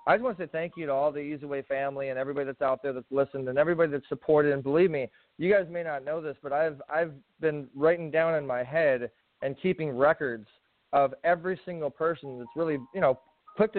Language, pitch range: English, 145-175 Hz